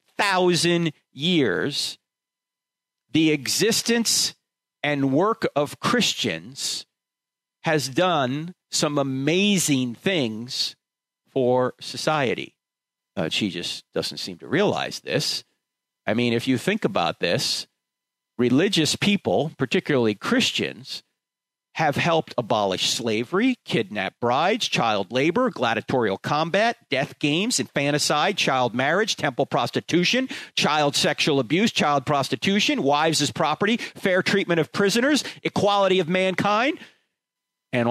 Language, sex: English, male